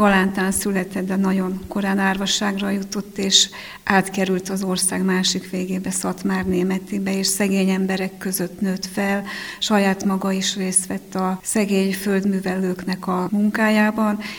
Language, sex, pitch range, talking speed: Hungarian, female, 185-200 Hz, 130 wpm